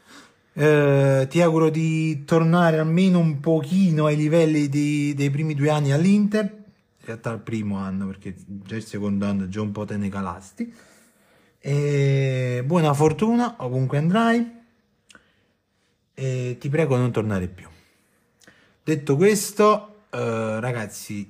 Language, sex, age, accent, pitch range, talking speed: Italian, male, 30-49, native, 110-160 Hz, 135 wpm